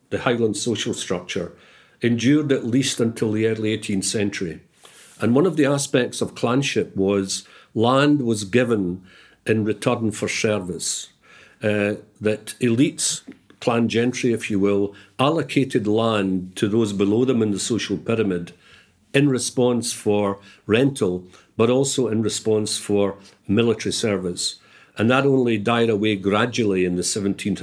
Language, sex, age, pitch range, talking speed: English, male, 50-69, 95-120 Hz, 140 wpm